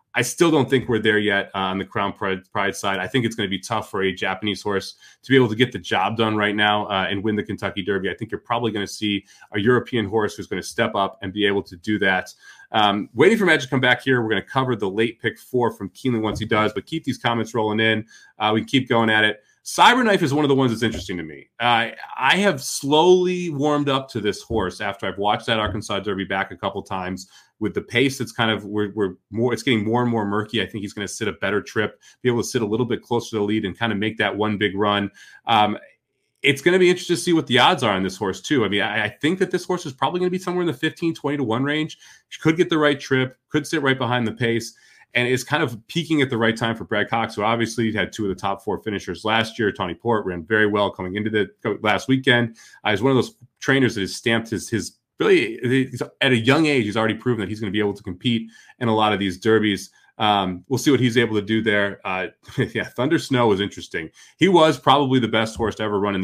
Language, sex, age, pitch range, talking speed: English, male, 30-49, 105-130 Hz, 275 wpm